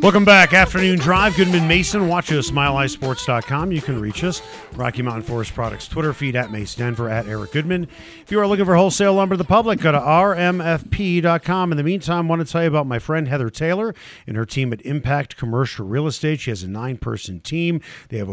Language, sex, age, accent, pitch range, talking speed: English, male, 40-59, American, 120-160 Hz, 215 wpm